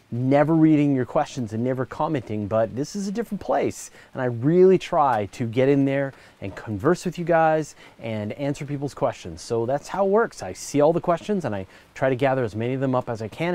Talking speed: 235 wpm